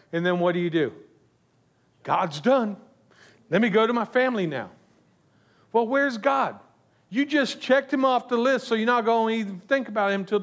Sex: male